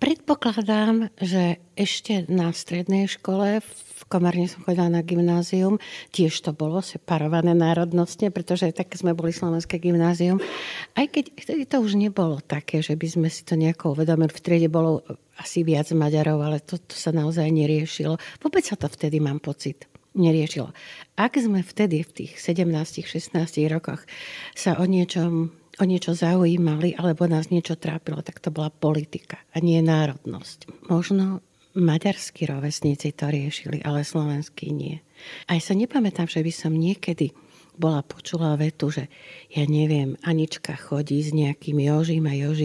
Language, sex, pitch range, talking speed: Slovak, female, 155-180 Hz, 150 wpm